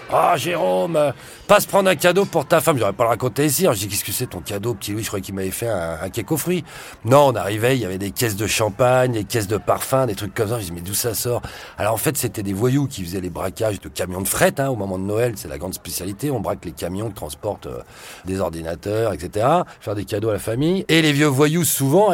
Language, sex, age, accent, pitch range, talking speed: French, male, 40-59, French, 100-145 Hz, 285 wpm